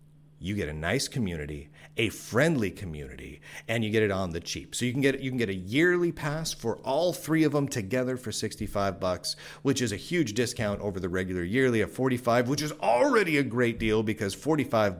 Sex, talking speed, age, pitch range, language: male, 210 wpm, 40-59, 95-130 Hz, English